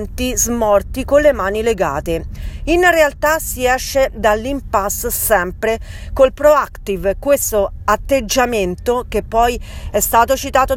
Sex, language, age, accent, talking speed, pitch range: female, Italian, 40-59, native, 110 wpm, 215-275 Hz